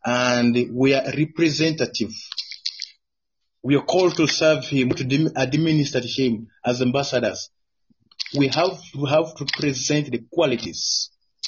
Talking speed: 120 wpm